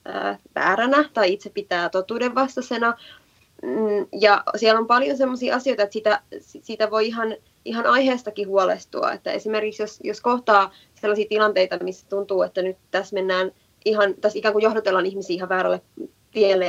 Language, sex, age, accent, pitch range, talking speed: Finnish, female, 20-39, native, 185-220 Hz, 150 wpm